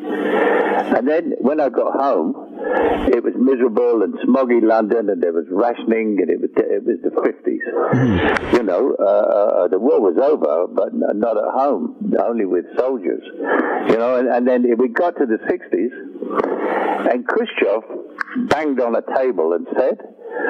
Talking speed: 165 wpm